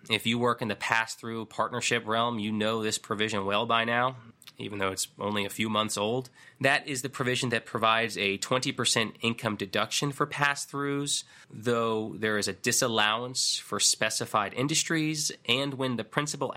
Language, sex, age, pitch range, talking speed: English, male, 20-39, 100-125 Hz, 170 wpm